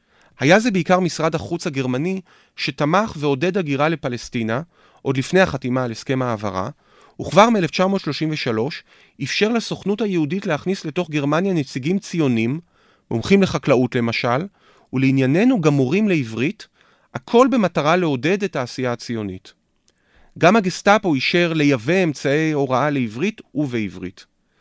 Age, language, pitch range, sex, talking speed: 30-49, Hebrew, 130-180 Hz, male, 115 wpm